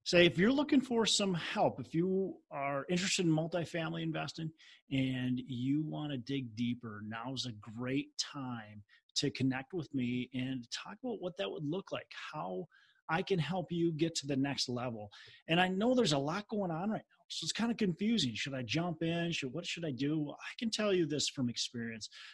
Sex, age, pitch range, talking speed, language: male, 30-49, 125-170 Hz, 205 wpm, English